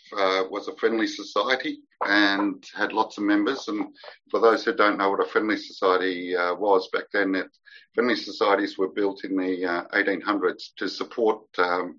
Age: 50-69